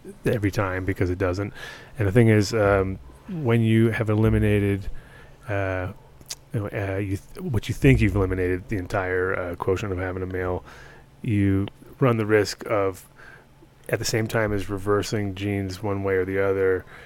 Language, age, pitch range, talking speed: English, 30-49, 95-110 Hz, 170 wpm